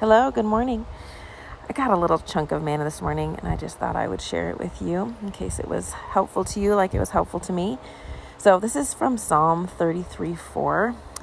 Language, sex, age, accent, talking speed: English, female, 30-49, American, 220 wpm